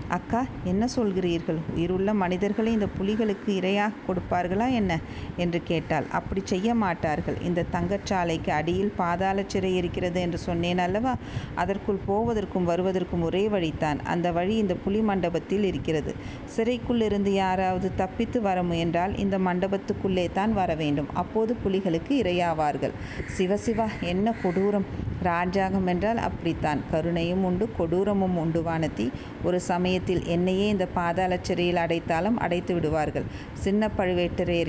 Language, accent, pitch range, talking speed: Tamil, native, 175-205 Hz, 110 wpm